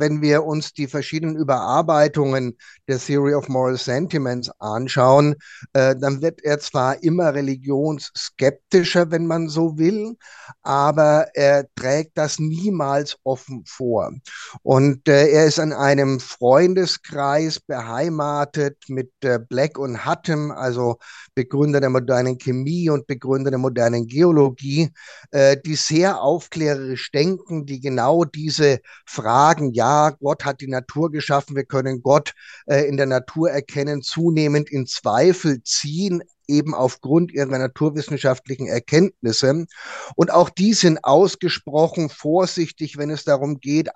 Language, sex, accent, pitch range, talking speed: German, male, German, 135-160 Hz, 130 wpm